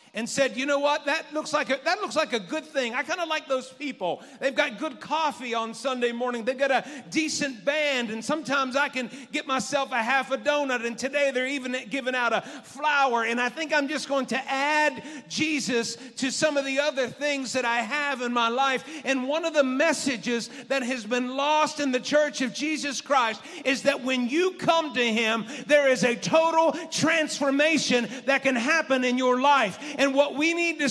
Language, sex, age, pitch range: English, male, 40-59, 260-310 Hz